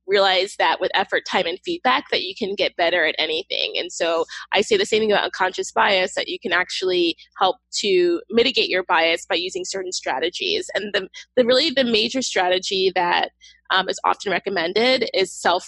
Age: 20-39